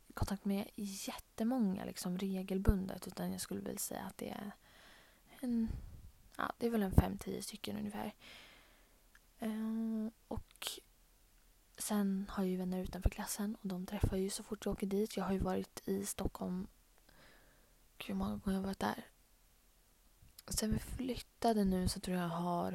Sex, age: female, 20-39